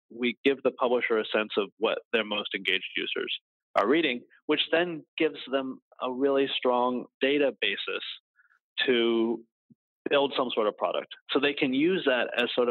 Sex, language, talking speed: male, English, 170 wpm